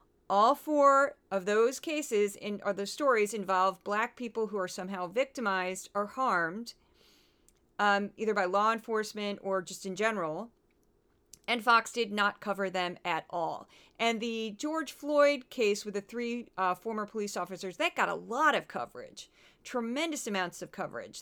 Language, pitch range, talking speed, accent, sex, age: English, 200-270 Hz, 160 wpm, American, female, 40-59